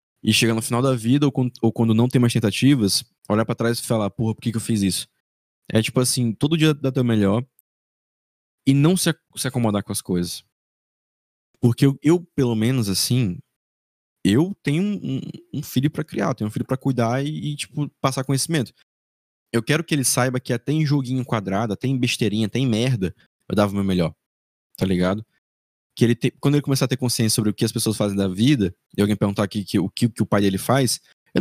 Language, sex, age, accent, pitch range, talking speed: Portuguese, male, 20-39, Brazilian, 105-135 Hz, 205 wpm